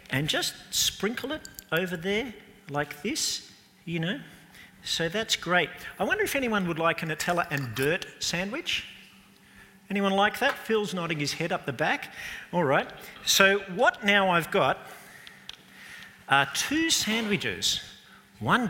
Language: English